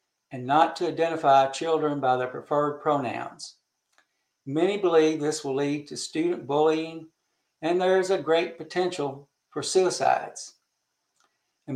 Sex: male